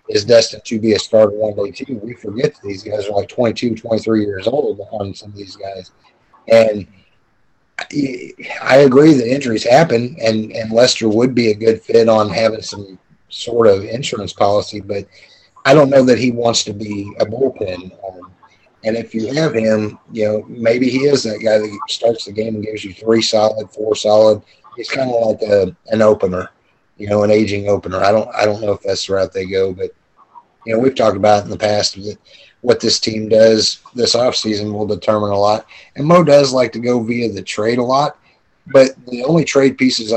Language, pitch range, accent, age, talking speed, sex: English, 105-125 Hz, American, 30-49, 210 wpm, male